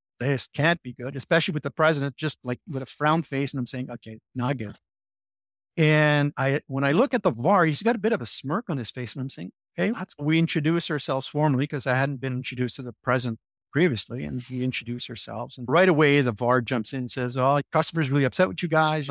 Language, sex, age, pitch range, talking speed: English, male, 50-69, 125-160 Hz, 235 wpm